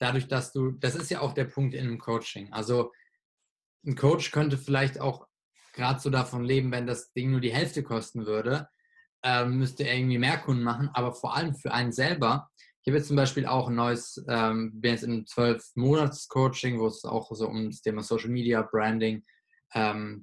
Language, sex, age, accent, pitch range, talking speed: German, male, 20-39, German, 115-135 Hz, 205 wpm